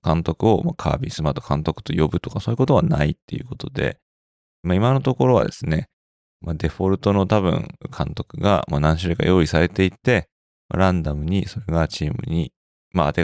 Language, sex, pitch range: Japanese, male, 80-115 Hz